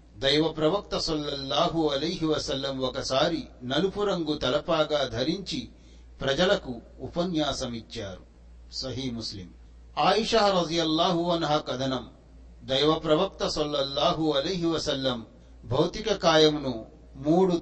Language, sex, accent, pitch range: Telugu, male, native, 130-175 Hz